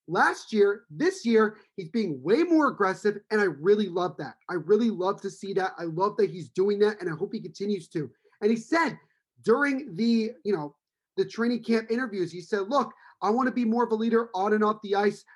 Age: 30-49